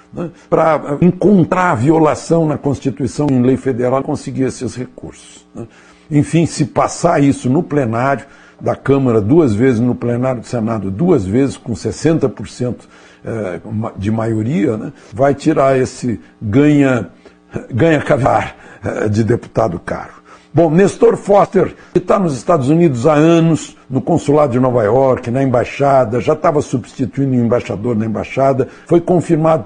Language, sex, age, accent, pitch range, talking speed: Portuguese, male, 60-79, Brazilian, 115-145 Hz, 135 wpm